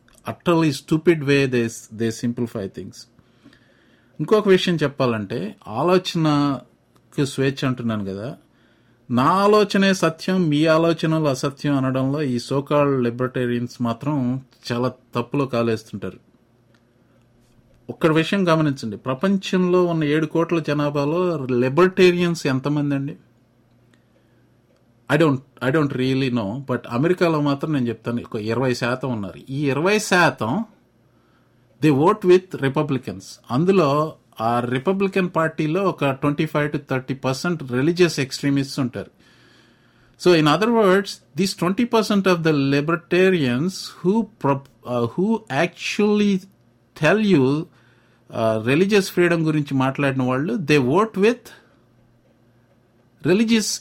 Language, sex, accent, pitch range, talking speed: English, male, Indian, 120-175 Hz, 90 wpm